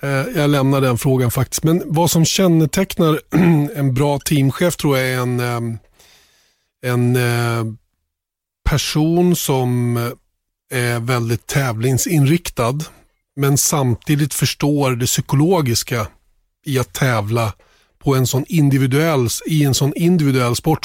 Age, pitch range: 30-49, 120-150 Hz